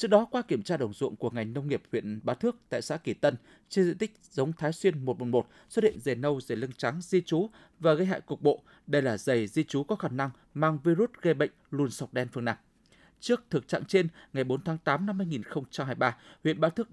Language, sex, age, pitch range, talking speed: Vietnamese, male, 20-39, 135-185 Hz, 245 wpm